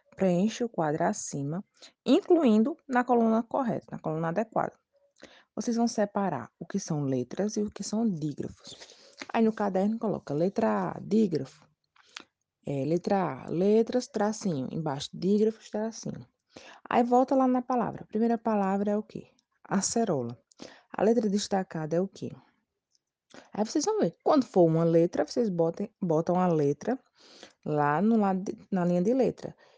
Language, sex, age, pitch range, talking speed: Portuguese, female, 20-39, 165-230 Hz, 155 wpm